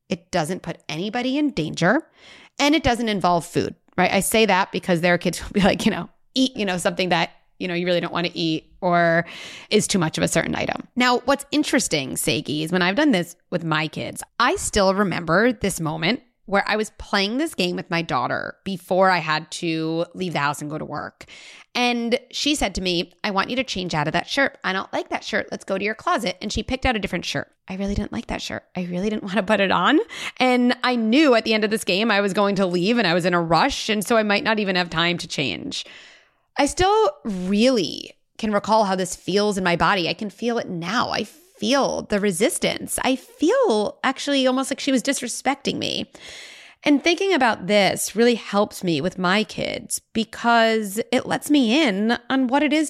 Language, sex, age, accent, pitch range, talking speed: English, female, 20-39, American, 185-255 Hz, 230 wpm